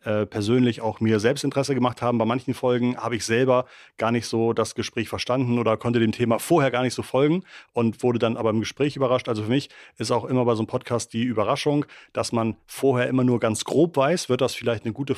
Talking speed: 235 wpm